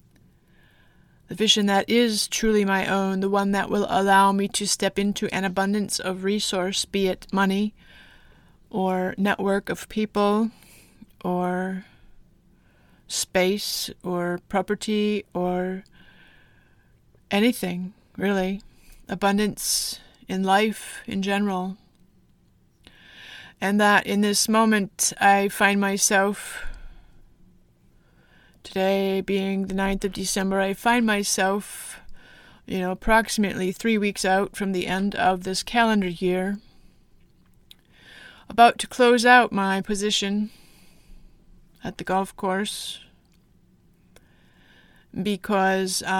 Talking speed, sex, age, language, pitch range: 105 wpm, female, 30-49, English, 190-205 Hz